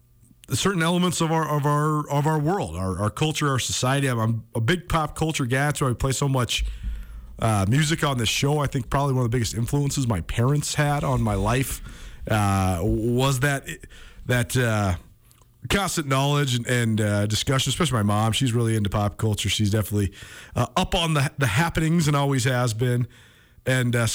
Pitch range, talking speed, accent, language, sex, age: 115-150 Hz, 195 wpm, American, English, male, 40-59